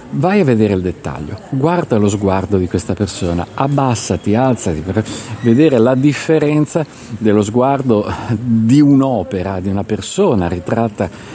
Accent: native